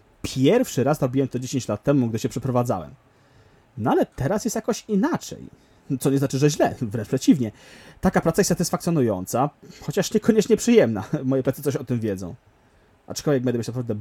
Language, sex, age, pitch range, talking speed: Polish, male, 30-49, 115-145 Hz, 170 wpm